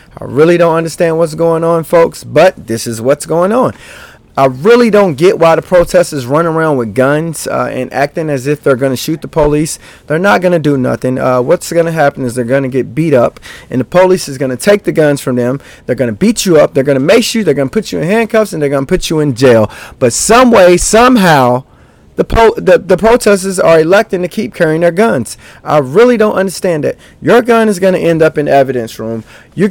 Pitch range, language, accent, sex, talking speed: 140-190 Hz, English, American, male, 250 wpm